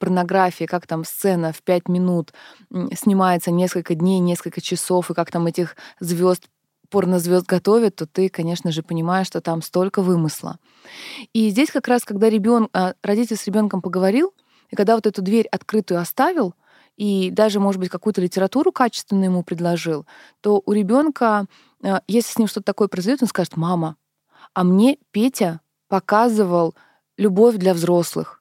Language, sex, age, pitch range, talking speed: Russian, female, 20-39, 175-220 Hz, 155 wpm